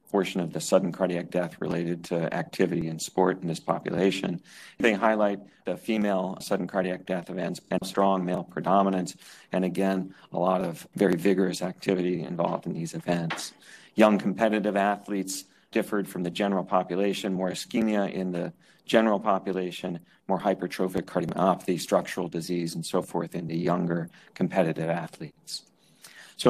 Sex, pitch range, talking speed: male, 90-105 Hz, 150 wpm